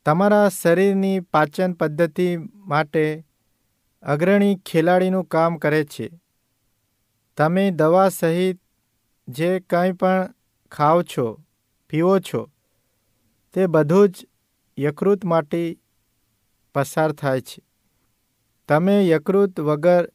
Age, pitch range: 50-69, 125-180 Hz